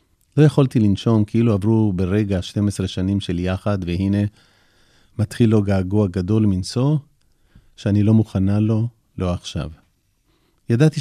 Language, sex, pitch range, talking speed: Hebrew, male, 95-115 Hz, 120 wpm